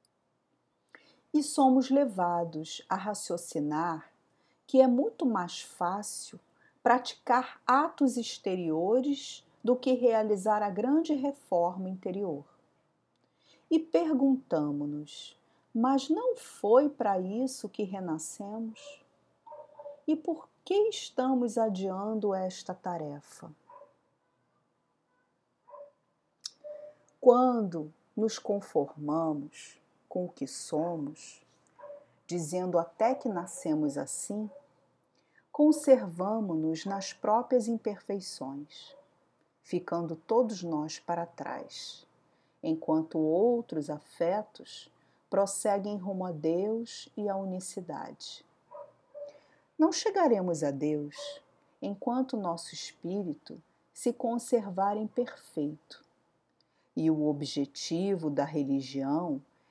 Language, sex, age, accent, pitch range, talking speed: Portuguese, female, 40-59, Brazilian, 170-260 Hz, 85 wpm